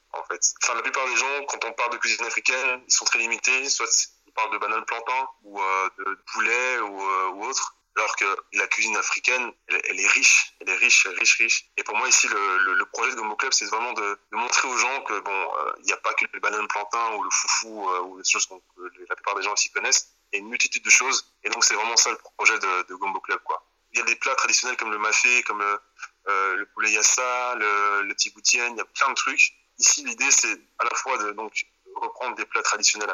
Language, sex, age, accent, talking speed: French, male, 20-39, French, 260 wpm